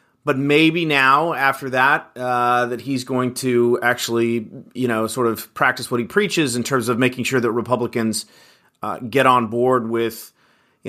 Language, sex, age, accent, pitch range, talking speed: English, male, 30-49, American, 115-140 Hz, 175 wpm